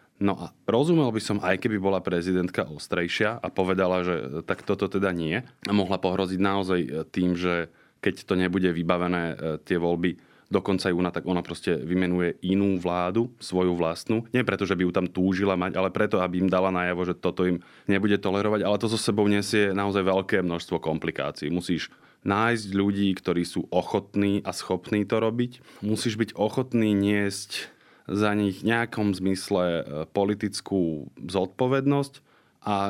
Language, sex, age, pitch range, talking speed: Slovak, male, 20-39, 90-105 Hz, 160 wpm